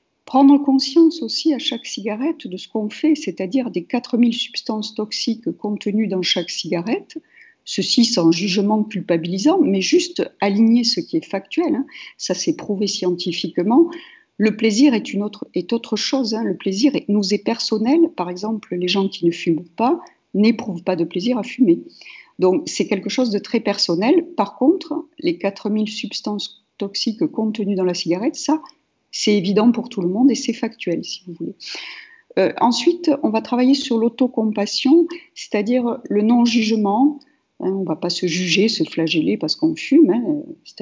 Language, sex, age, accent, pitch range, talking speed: French, female, 50-69, French, 195-285 Hz, 170 wpm